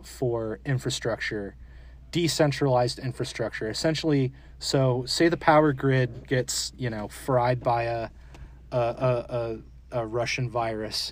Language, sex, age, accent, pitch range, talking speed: English, male, 30-49, American, 105-135 Hz, 120 wpm